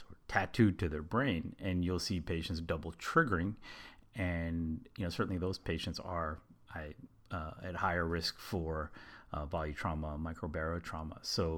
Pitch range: 80-100 Hz